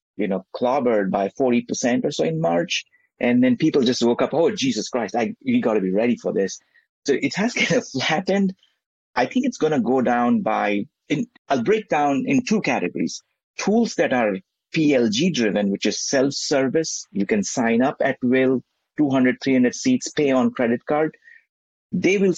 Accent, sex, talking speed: Indian, male, 180 wpm